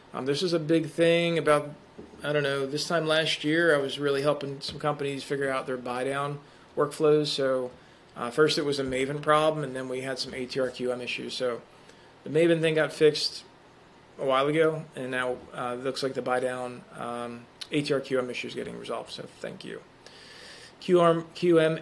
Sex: male